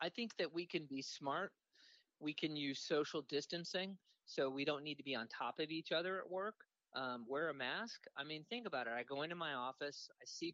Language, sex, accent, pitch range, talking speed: English, male, American, 135-170 Hz, 235 wpm